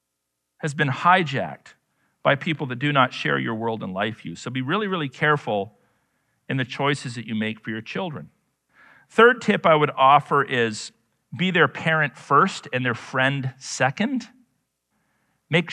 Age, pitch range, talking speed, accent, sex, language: 40-59, 125-190 Hz, 170 wpm, American, male, English